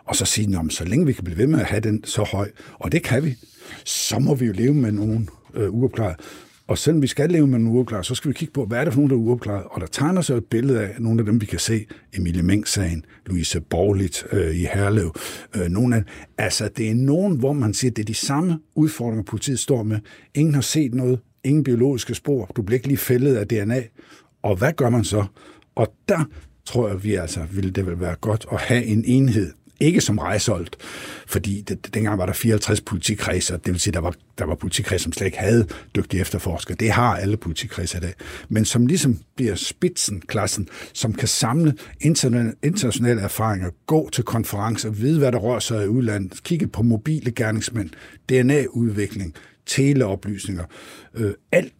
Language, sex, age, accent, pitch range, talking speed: Danish, male, 60-79, native, 100-130 Hz, 210 wpm